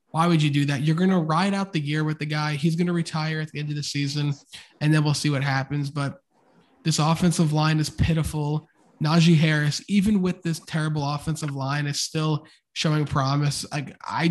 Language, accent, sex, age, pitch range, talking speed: English, American, male, 20-39, 145-170 Hz, 215 wpm